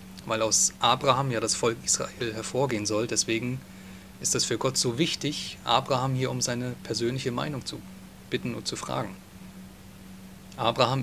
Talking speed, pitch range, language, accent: 150 wpm, 95-125 Hz, German, German